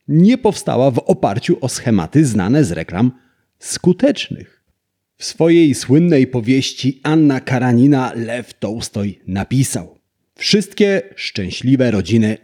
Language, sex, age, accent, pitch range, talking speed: Polish, male, 40-59, native, 95-135 Hz, 105 wpm